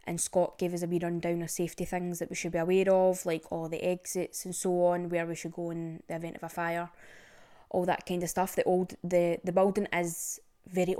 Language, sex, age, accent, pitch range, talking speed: English, female, 20-39, British, 170-185 Hz, 245 wpm